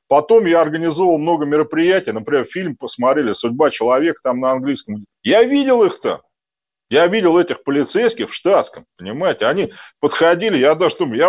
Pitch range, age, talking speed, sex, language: 135-200 Hz, 40-59, 155 wpm, male, Russian